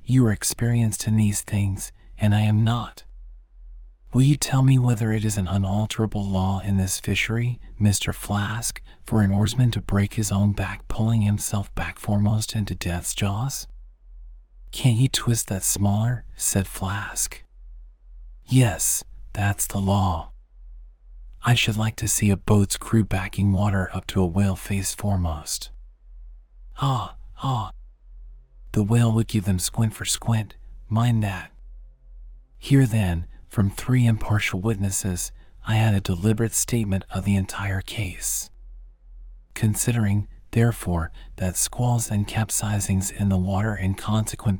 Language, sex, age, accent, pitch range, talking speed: English, male, 40-59, American, 95-110 Hz, 140 wpm